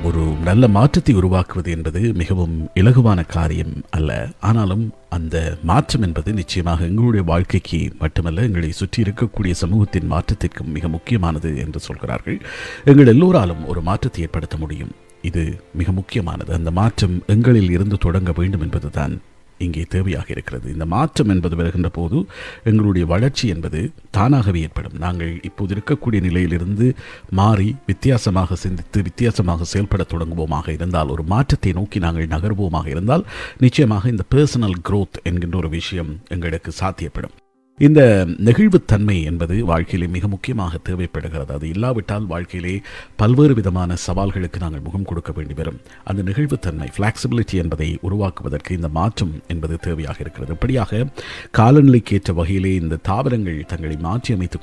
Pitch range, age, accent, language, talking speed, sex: 85-110 Hz, 50-69, native, Tamil, 125 wpm, male